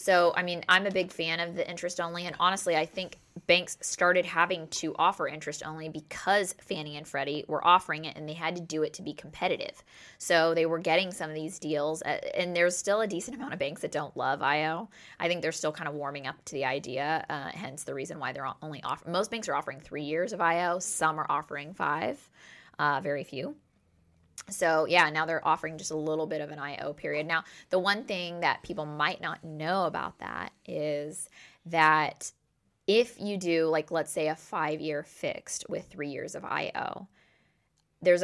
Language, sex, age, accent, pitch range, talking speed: English, female, 20-39, American, 150-175 Hz, 210 wpm